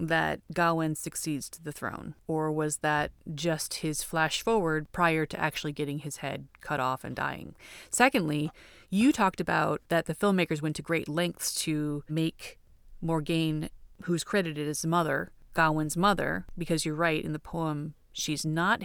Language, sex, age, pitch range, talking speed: English, female, 30-49, 145-175 Hz, 165 wpm